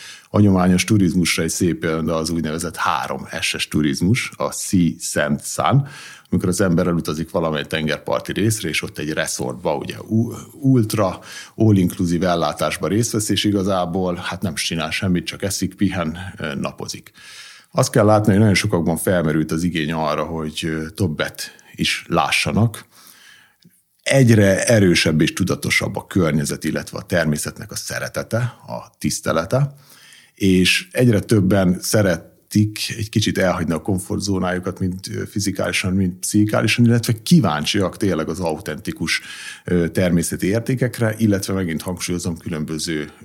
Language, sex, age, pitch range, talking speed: Hungarian, male, 50-69, 85-105 Hz, 130 wpm